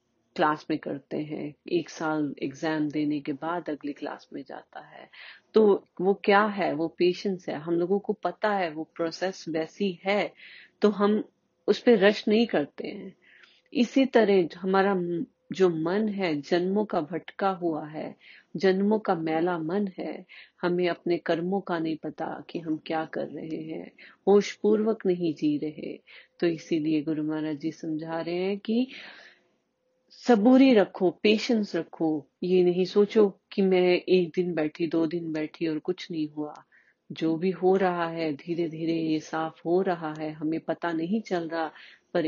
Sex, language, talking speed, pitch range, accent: female, Hindi, 165 wpm, 160-195 Hz, native